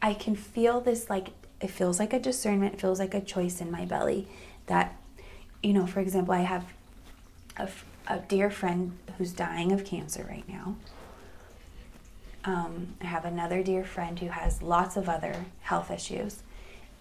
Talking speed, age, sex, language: 170 wpm, 20-39, female, English